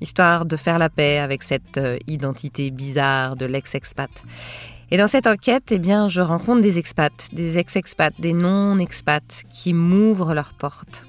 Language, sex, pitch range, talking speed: French, female, 155-210 Hz, 155 wpm